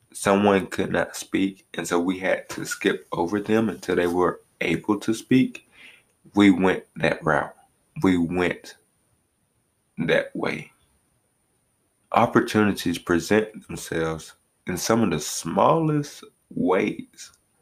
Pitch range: 85-110 Hz